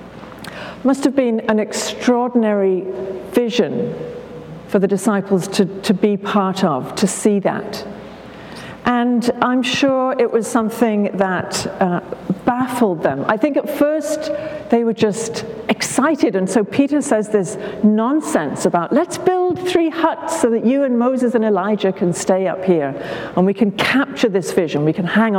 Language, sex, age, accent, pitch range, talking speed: English, female, 50-69, British, 185-235 Hz, 155 wpm